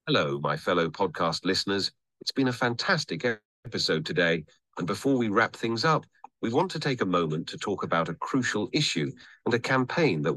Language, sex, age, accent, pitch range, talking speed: English, male, 40-59, British, 85-125 Hz, 190 wpm